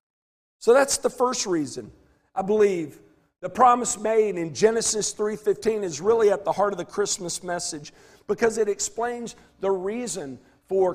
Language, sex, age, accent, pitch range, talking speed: English, male, 50-69, American, 170-220 Hz, 155 wpm